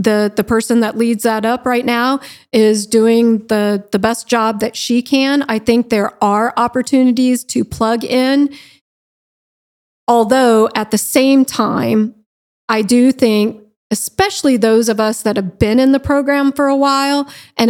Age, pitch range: 40-59, 220-265 Hz